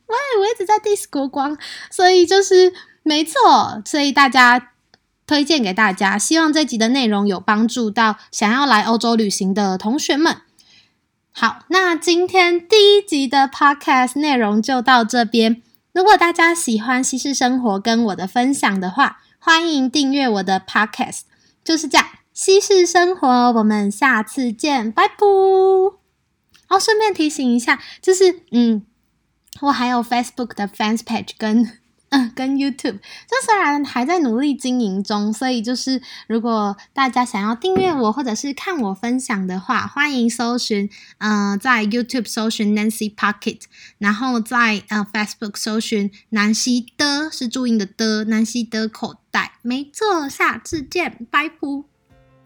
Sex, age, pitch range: female, 20-39, 215-300 Hz